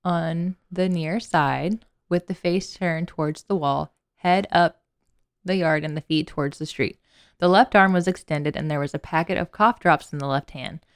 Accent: American